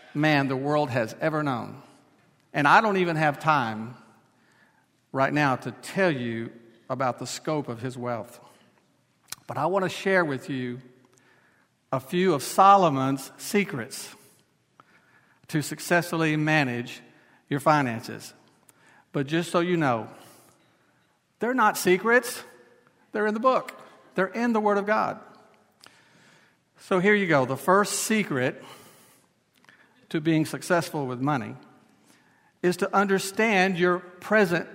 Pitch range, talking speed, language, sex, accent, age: 140-200 Hz, 130 wpm, English, male, American, 50-69